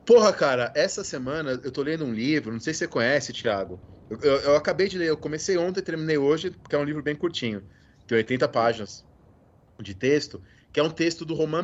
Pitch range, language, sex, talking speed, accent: 115-170 Hz, Portuguese, male, 225 wpm, Brazilian